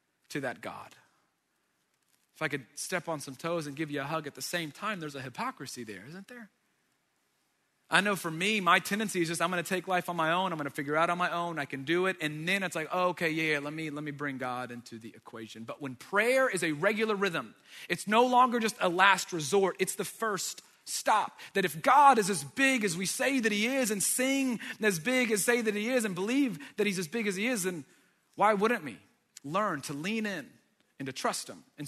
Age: 30-49